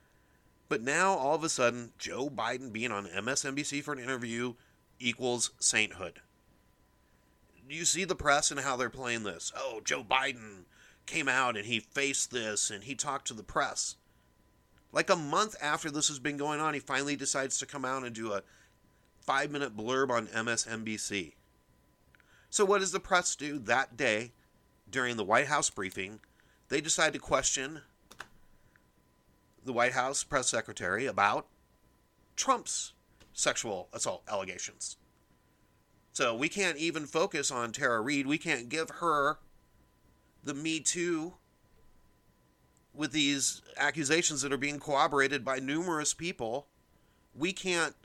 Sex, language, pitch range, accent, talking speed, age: male, English, 115-150 Hz, American, 145 wpm, 30-49